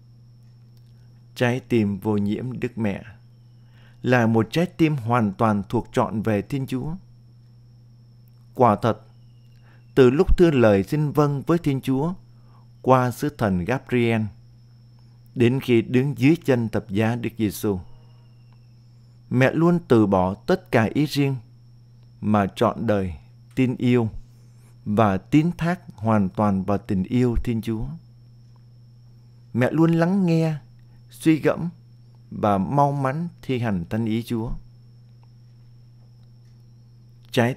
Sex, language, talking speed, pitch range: male, Vietnamese, 125 wpm, 115-125 Hz